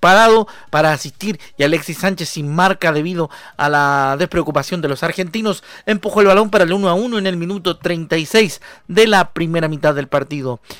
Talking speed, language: 185 wpm, Spanish